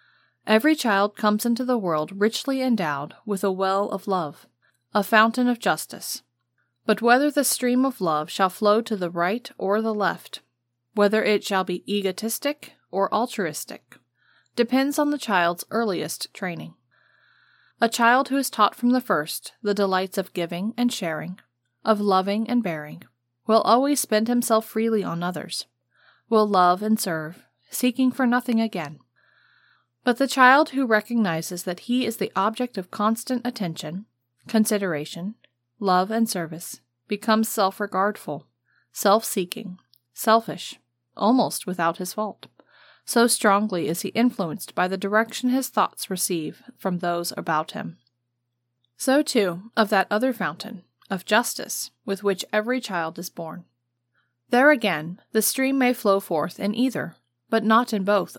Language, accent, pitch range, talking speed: English, American, 175-230 Hz, 150 wpm